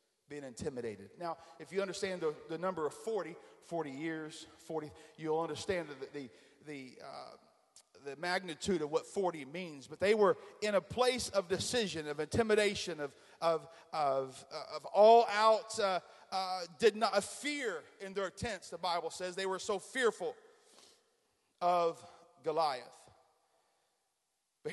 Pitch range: 140-205 Hz